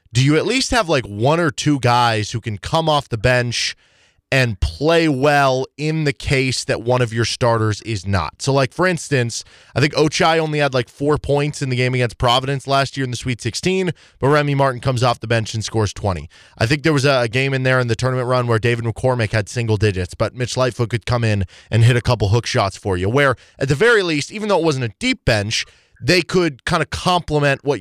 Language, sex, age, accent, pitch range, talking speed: English, male, 20-39, American, 115-145 Hz, 240 wpm